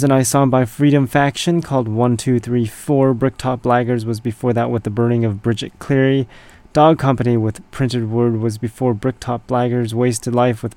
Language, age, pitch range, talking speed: English, 20-39, 110-130 Hz, 190 wpm